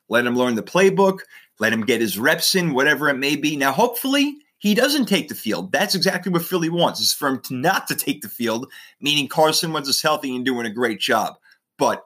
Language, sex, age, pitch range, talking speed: English, male, 30-49, 120-170 Hz, 230 wpm